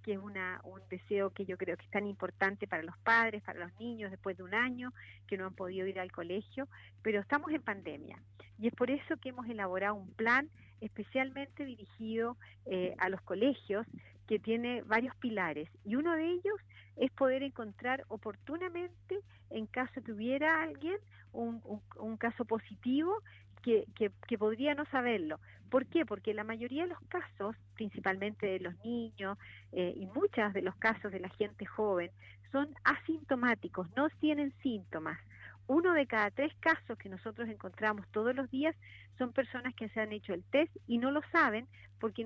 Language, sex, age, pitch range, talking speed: Spanish, female, 50-69, 190-265 Hz, 180 wpm